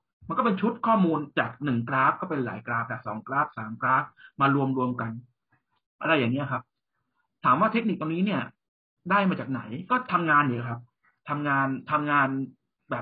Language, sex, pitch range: Thai, male, 125-165 Hz